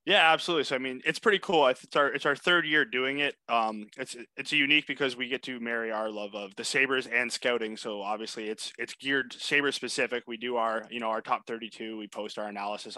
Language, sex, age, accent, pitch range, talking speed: English, male, 20-39, American, 105-130 Hz, 240 wpm